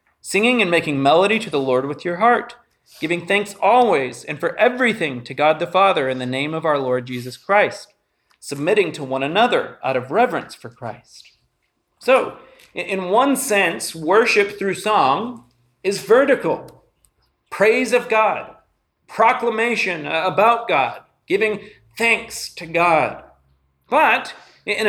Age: 40-59